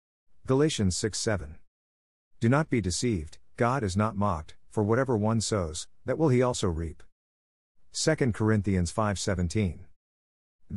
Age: 50-69